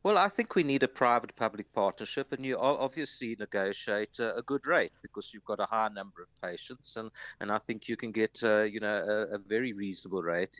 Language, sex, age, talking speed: English, male, 60-79, 220 wpm